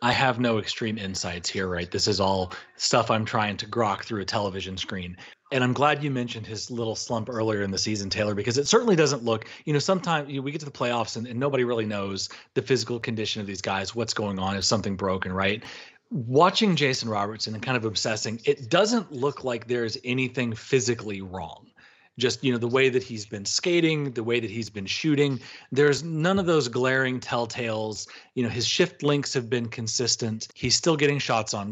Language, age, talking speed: English, 30-49, 210 wpm